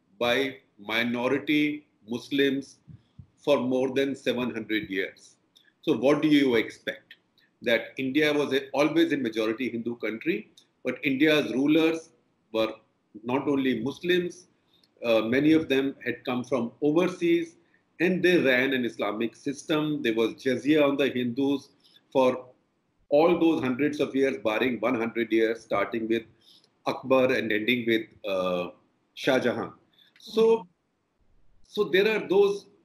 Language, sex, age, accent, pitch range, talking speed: Marathi, male, 40-59, native, 120-155 Hz, 130 wpm